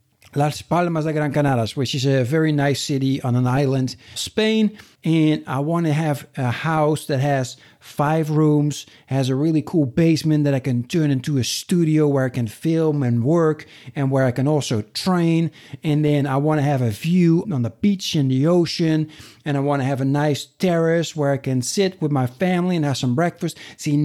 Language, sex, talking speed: English, male, 210 wpm